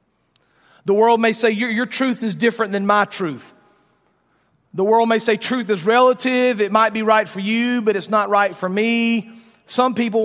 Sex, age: male, 40-59